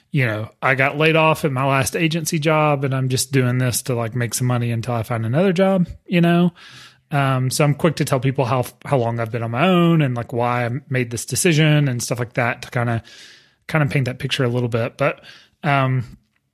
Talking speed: 240 wpm